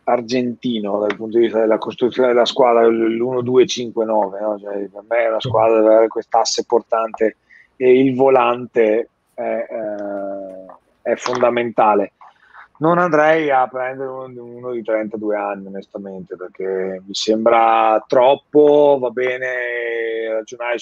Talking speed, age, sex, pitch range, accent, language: 125 wpm, 30-49, male, 105-125 Hz, native, Italian